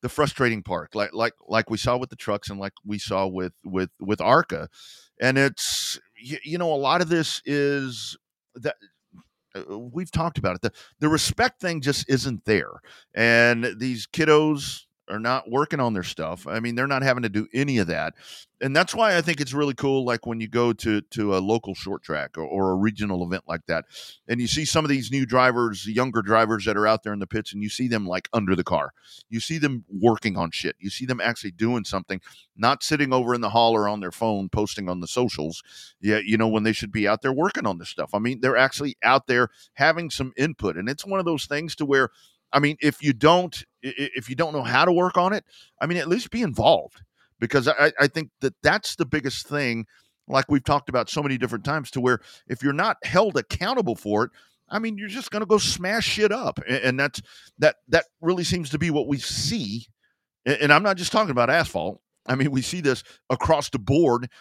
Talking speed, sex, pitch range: 230 wpm, male, 110-155 Hz